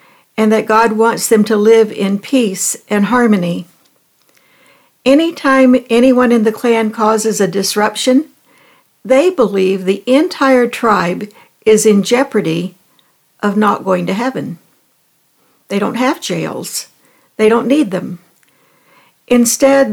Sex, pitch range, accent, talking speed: female, 205-250 Hz, American, 125 wpm